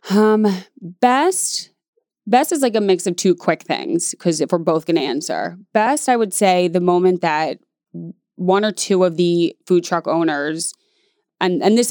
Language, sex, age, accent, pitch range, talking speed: English, female, 20-39, American, 170-210 Hz, 180 wpm